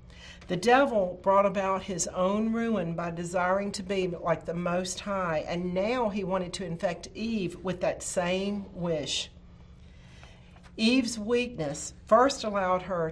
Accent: American